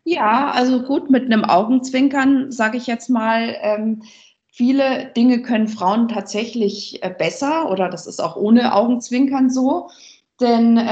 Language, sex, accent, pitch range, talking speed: German, female, German, 185-225 Hz, 130 wpm